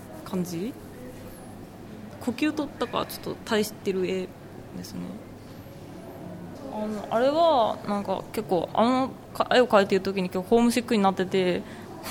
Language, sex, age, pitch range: Japanese, female, 20-39, 185-240 Hz